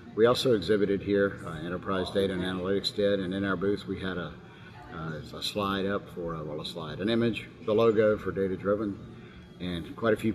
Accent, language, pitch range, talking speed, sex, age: American, English, 95-110 Hz, 210 wpm, male, 50-69